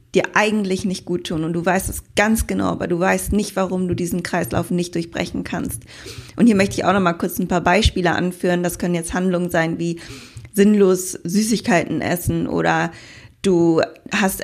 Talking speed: 190 wpm